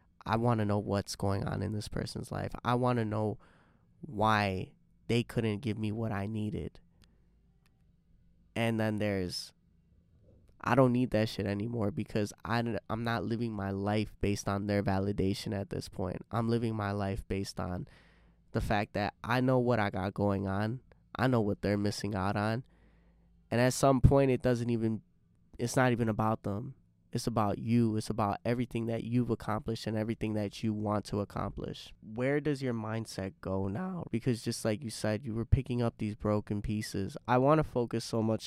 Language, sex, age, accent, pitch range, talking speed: English, male, 20-39, American, 100-120 Hz, 185 wpm